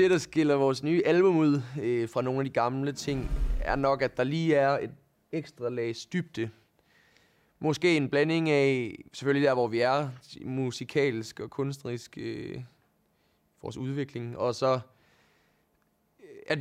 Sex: male